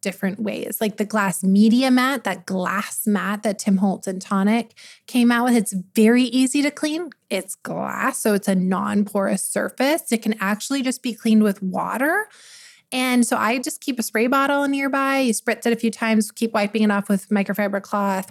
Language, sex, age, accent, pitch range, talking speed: English, female, 20-39, American, 205-255 Hz, 195 wpm